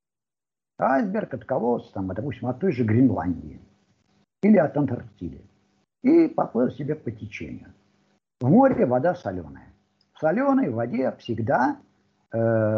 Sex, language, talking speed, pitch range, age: male, Russian, 120 wpm, 100-155 Hz, 50-69